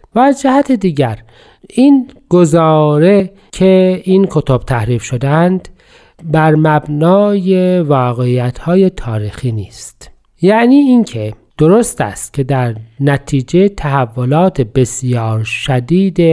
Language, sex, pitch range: Persian, male, 125-180 Hz